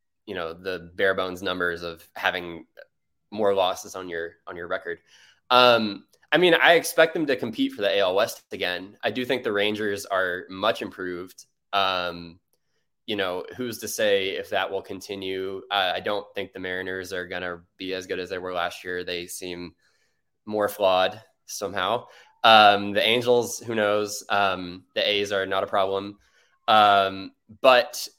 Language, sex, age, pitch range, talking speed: English, male, 20-39, 95-125 Hz, 175 wpm